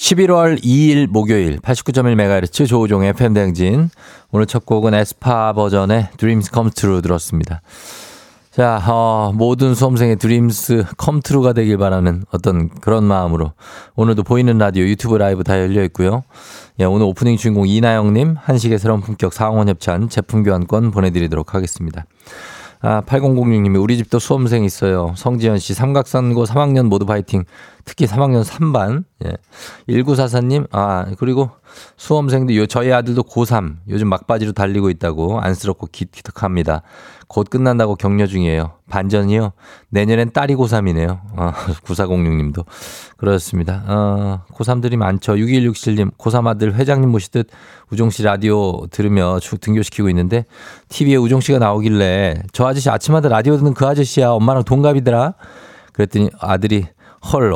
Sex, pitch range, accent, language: male, 95-125 Hz, native, Korean